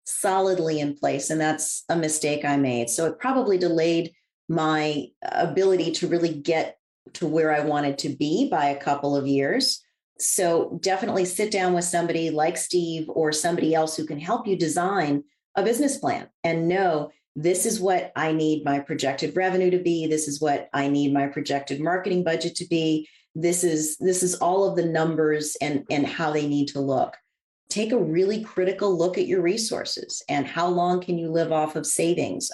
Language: English